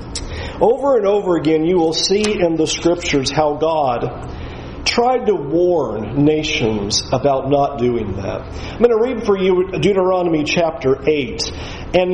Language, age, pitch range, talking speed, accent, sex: English, 40-59, 160-240 Hz, 150 wpm, American, male